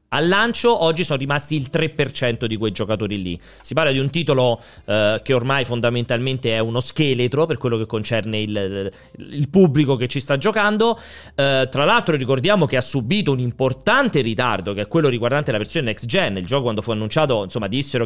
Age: 30-49